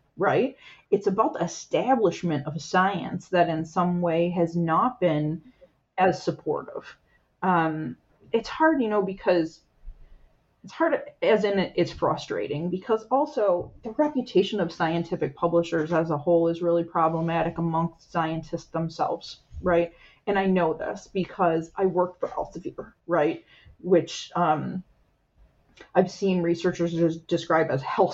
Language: English